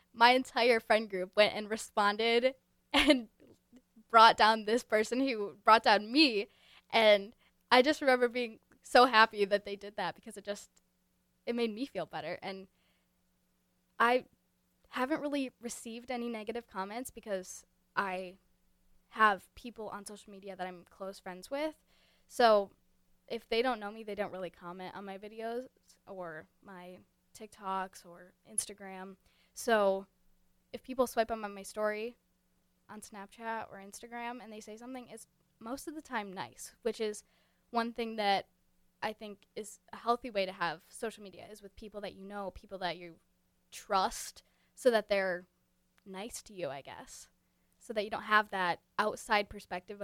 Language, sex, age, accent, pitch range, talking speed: English, female, 10-29, American, 185-230 Hz, 160 wpm